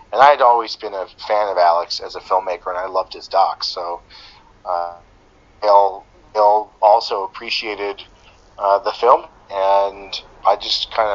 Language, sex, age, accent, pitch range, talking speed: English, male, 30-49, American, 90-100 Hz, 155 wpm